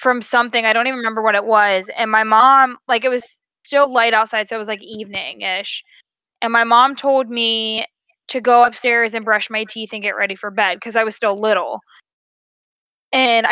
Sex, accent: female, American